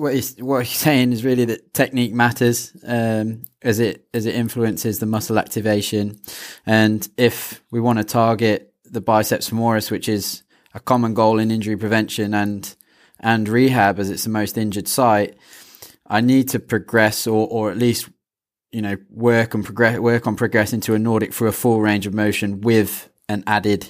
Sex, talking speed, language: male, 185 wpm, English